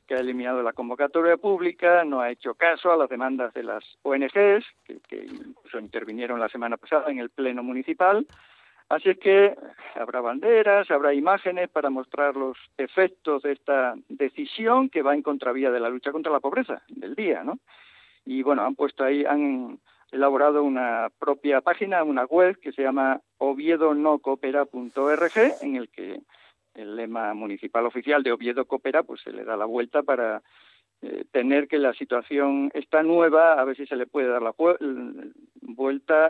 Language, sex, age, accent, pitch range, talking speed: Spanish, male, 60-79, Spanish, 130-185 Hz, 175 wpm